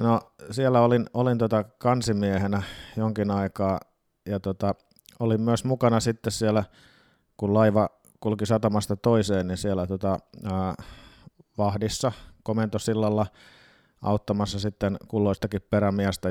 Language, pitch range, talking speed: Finnish, 100-115 Hz, 110 wpm